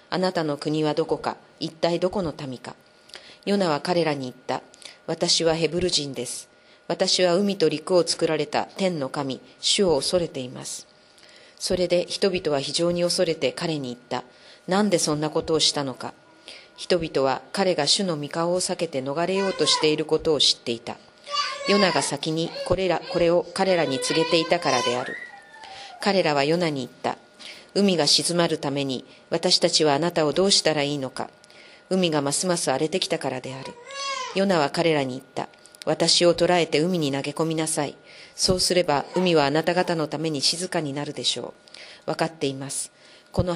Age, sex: 40-59, female